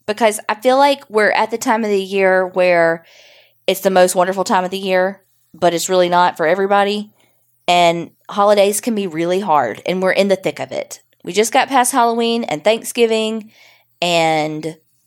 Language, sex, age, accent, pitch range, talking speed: English, female, 20-39, American, 160-210 Hz, 185 wpm